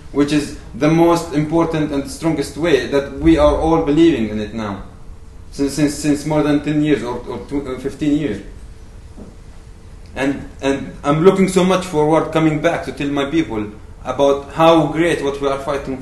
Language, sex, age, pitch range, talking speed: German, male, 20-39, 130-160 Hz, 175 wpm